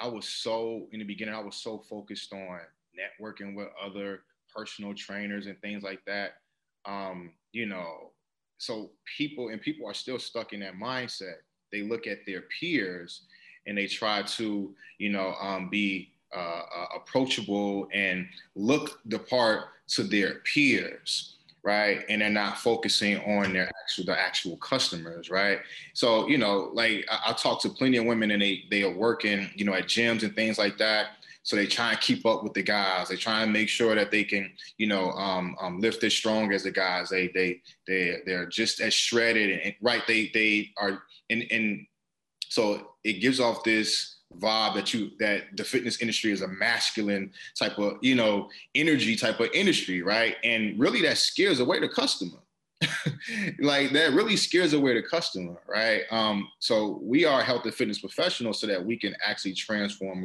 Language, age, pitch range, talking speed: English, 20-39, 100-115 Hz, 185 wpm